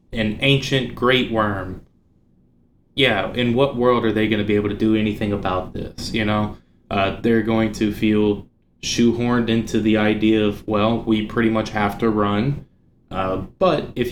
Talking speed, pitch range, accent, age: 175 wpm, 100-115 Hz, American, 20-39